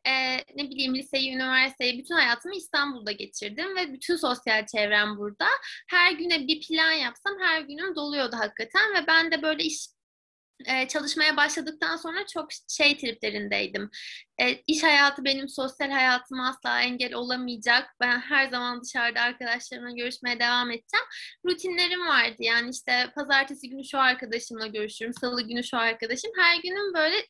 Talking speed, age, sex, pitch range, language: 150 wpm, 20-39, female, 250-335 Hz, Turkish